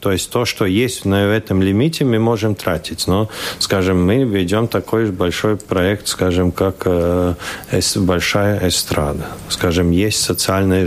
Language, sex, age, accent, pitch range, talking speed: Russian, male, 40-59, native, 90-115 Hz, 145 wpm